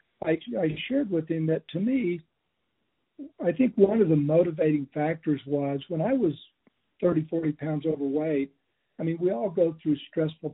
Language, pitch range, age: English, 145-165 Hz, 60-79